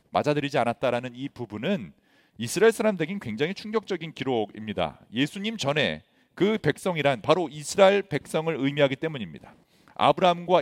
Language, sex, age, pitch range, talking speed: English, male, 40-59, 145-195 Hz, 105 wpm